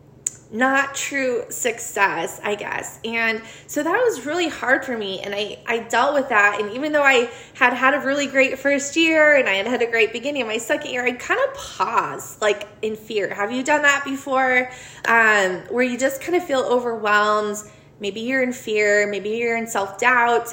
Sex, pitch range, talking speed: female, 200-260 Hz, 200 wpm